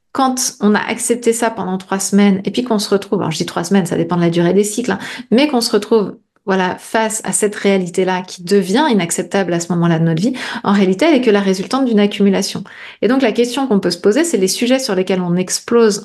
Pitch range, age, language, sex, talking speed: 185-230 Hz, 30-49, French, female, 250 wpm